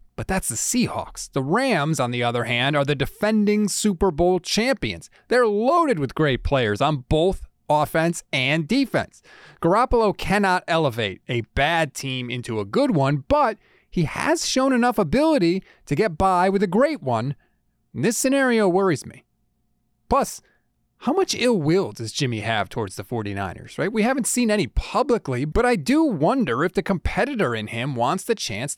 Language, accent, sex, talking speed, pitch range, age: English, American, male, 170 wpm, 125-200 Hz, 30-49